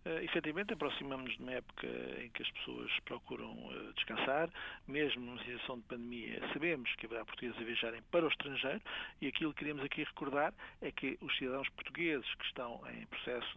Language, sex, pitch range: Portuguese, male, 120-150 Hz